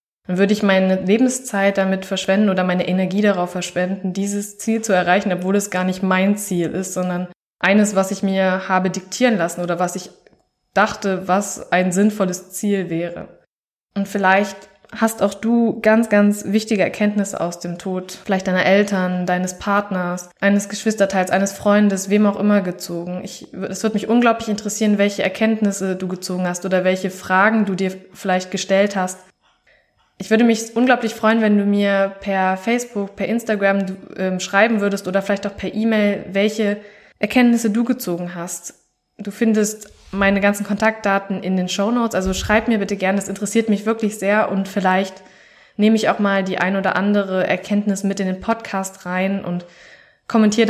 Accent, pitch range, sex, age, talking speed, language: German, 185-205 Hz, female, 20-39, 175 wpm, German